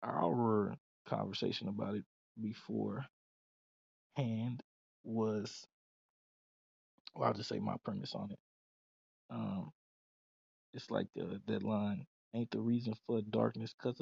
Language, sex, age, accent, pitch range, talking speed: English, male, 20-39, American, 110-120 Hz, 110 wpm